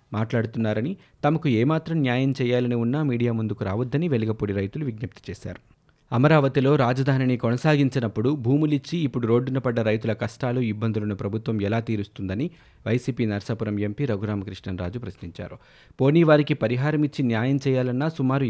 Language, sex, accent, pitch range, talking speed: Telugu, male, native, 110-140 Hz, 115 wpm